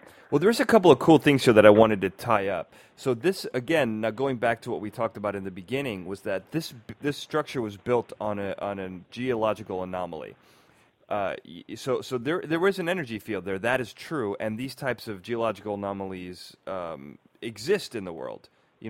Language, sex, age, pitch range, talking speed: English, male, 30-49, 100-130 Hz, 210 wpm